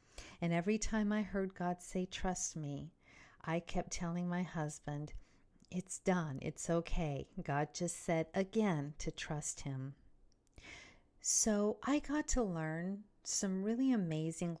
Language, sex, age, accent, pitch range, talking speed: English, female, 50-69, American, 165-210 Hz, 135 wpm